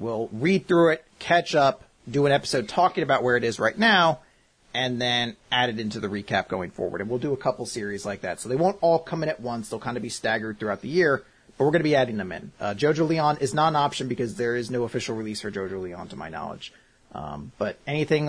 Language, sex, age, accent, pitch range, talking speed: English, male, 30-49, American, 110-145 Hz, 260 wpm